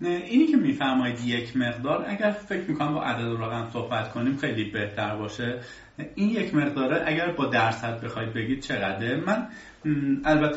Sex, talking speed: male, 155 wpm